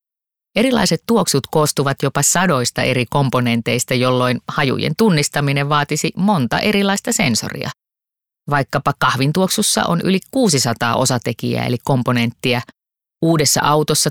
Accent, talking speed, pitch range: native, 105 wpm, 125-165 Hz